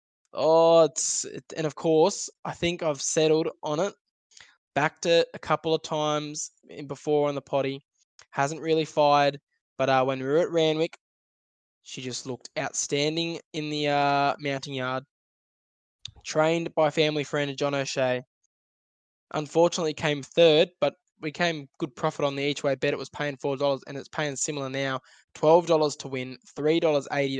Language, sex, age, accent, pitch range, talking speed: English, male, 10-29, Australian, 135-155 Hz, 160 wpm